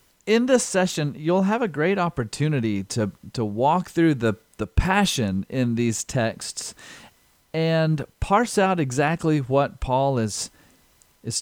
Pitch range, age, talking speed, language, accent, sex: 120-160 Hz, 40-59, 135 wpm, English, American, male